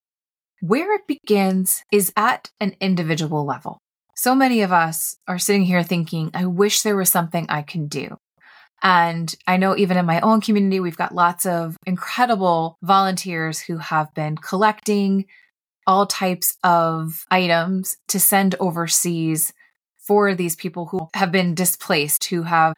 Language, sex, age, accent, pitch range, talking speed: English, female, 20-39, American, 170-200 Hz, 155 wpm